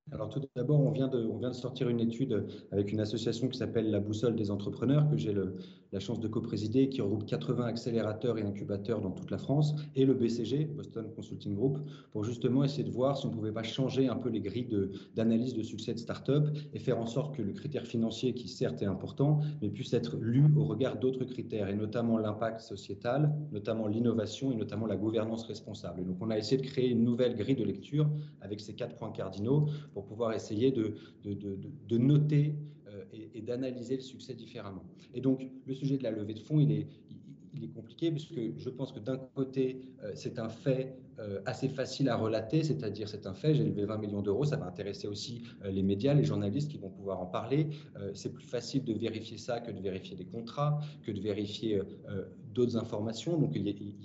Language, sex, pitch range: French, male, 105-130 Hz